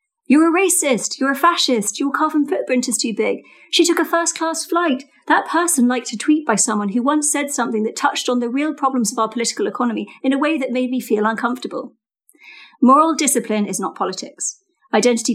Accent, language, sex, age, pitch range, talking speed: British, English, female, 40-59, 215-280 Hz, 205 wpm